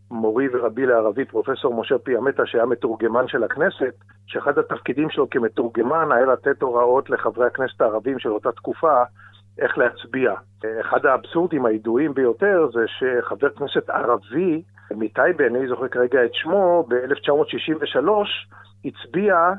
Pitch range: 110-160 Hz